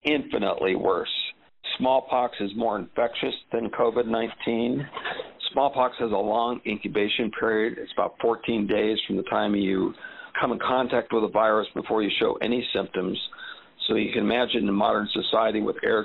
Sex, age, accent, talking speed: male, 50-69, American, 155 wpm